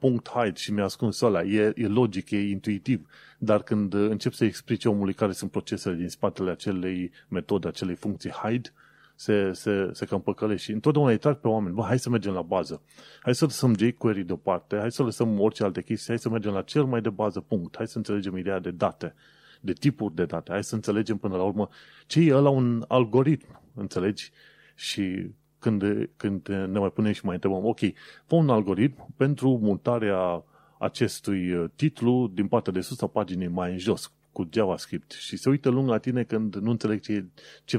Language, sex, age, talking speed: Romanian, male, 30-49, 195 wpm